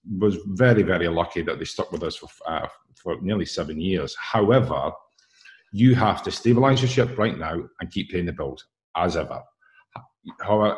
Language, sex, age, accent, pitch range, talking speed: English, male, 50-69, British, 95-120 Hz, 180 wpm